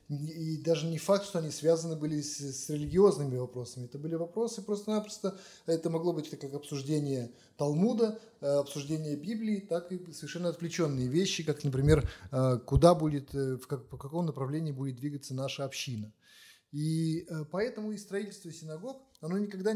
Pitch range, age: 145-190 Hz, 20-39